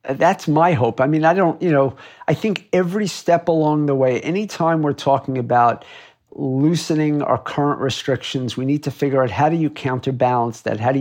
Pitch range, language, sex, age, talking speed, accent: 130-160 Hz, English, male, 50-69, 195 wpm, American